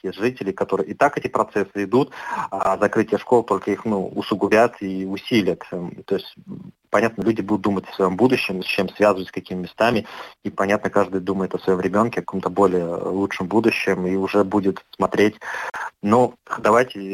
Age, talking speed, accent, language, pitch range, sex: 30-49, 165 wpm, native, Russian, 90-105 Hz, male